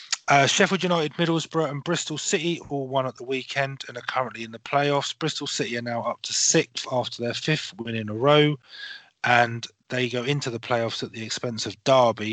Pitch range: 115-145 Hz